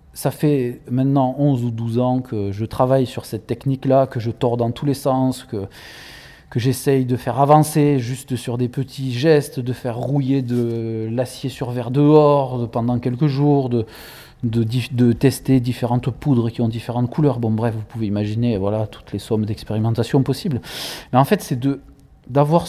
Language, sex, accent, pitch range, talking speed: French, male, French, 115-140 Hz, 190 wpm